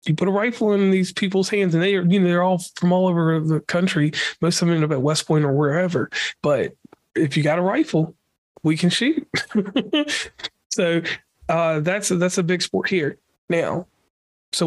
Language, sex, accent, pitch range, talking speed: English, male, American, 155-185 Hz, 205 wpm